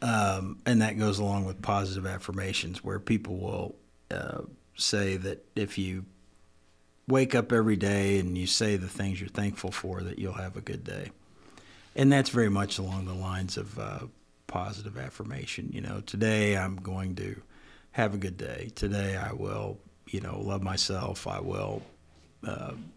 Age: 50-69